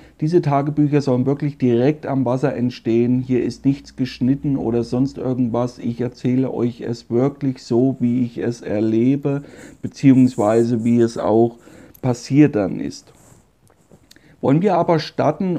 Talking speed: 140 wpm